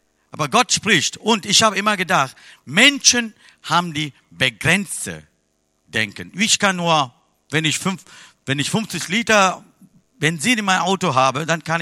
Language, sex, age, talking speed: German, male, 50-69, 155 wpm